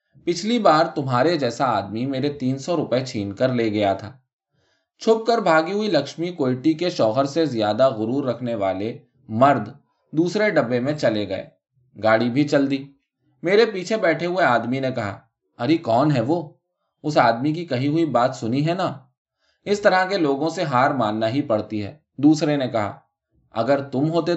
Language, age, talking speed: Urdu, 20-39, 100 wpm